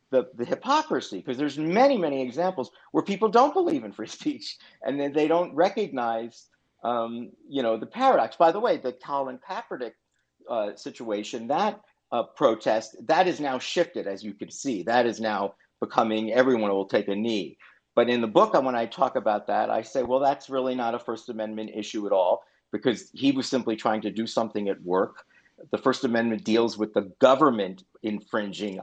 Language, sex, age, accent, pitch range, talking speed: English, male, 50-69, American, 110-150 Hz, 190 wpm